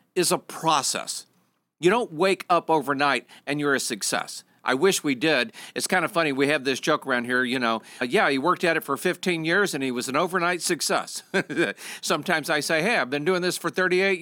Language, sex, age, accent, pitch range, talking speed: English, male, 50-69, American, 145-185 Hz, 225 wpm